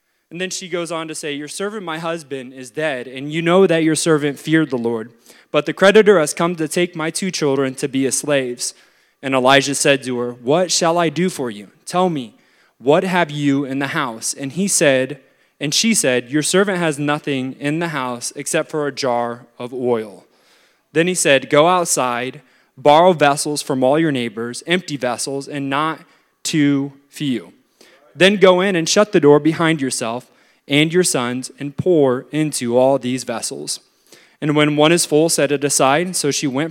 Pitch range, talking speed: 135-170 Hz, 195 wpm